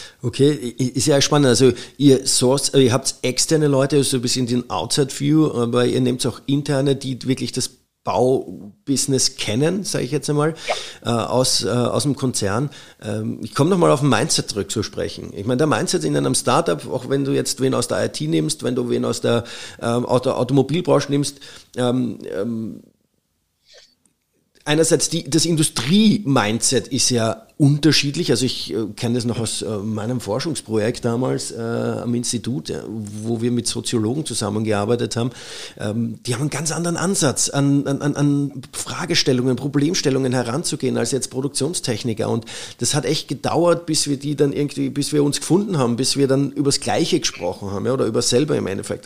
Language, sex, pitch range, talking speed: German, male, 120-145 Hz, 175 wpm